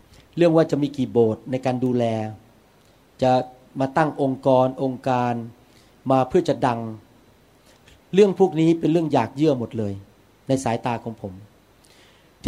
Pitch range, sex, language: 120-150 Hz, male, Thai